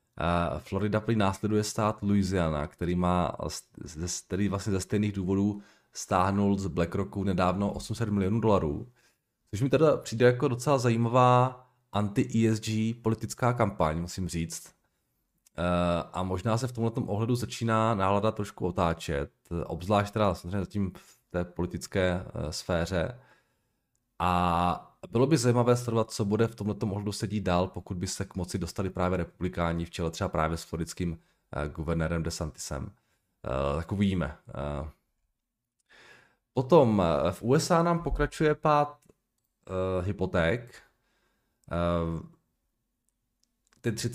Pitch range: 90-115 Hz